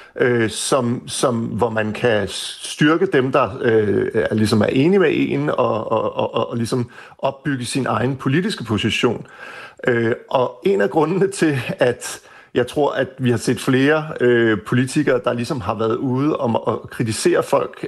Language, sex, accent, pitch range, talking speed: Danish, male, native, 120-145 Hz, 170 wpm